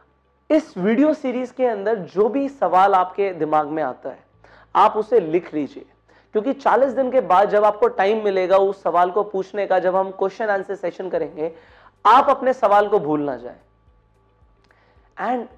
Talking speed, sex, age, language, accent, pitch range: 175 wpm, male, 30-49, Hindi, native, 165-235 Hz